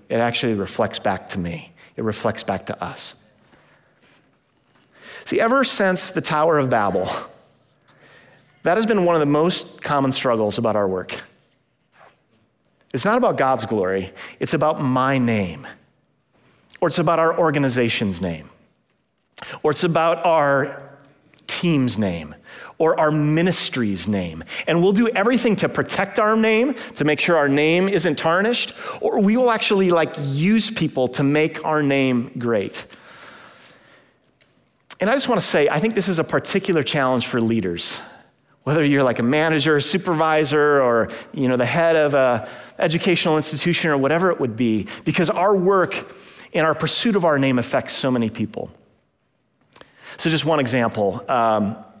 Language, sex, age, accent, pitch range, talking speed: English, male, 40-59, American, 120-170 Hz, 155 wpm